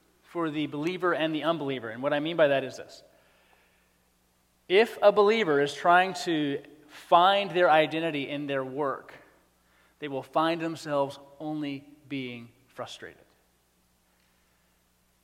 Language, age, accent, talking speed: English, 30-49, American, 130 wpm